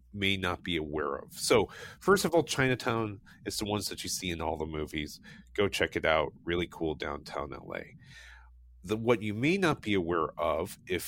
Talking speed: 200 wpm